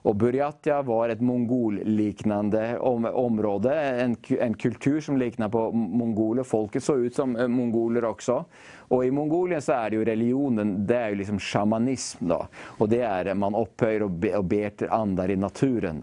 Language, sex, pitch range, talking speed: English, male, 100-120 Hz, 170 wpm